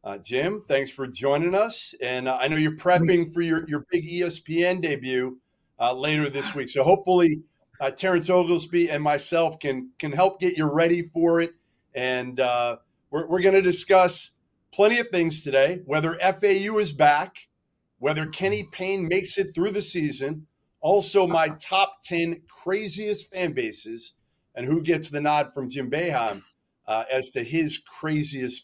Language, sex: English, male